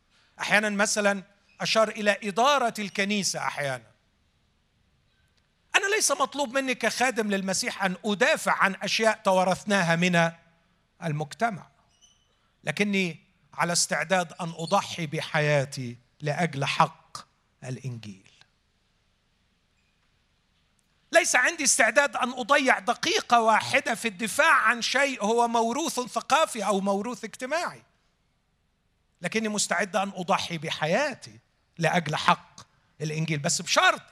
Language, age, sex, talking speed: Arabic, 50-69, male, 100 wpm